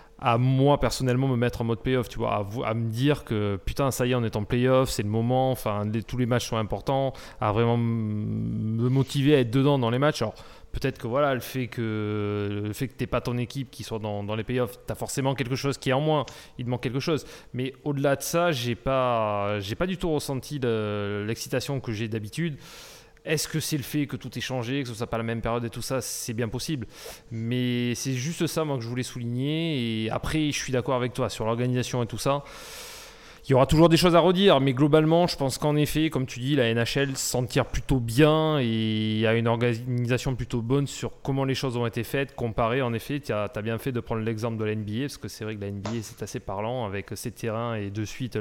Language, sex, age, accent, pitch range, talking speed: French, male, 20-39, French, 115-135 Hz, 255 wpm